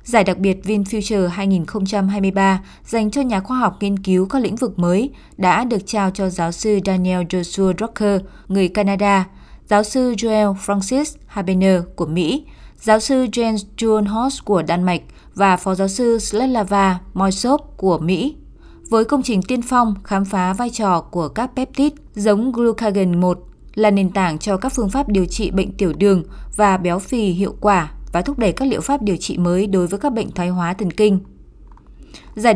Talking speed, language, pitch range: 185 wpm, Vietnamese, 185-225 Hz